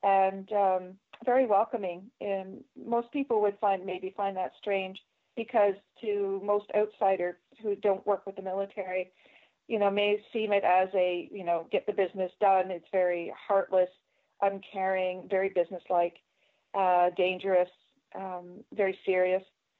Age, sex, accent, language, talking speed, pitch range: 40-59, female, American, English, 140 wpm, 185-205 Hz